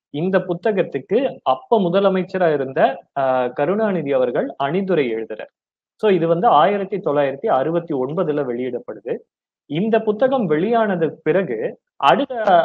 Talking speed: 90 wpm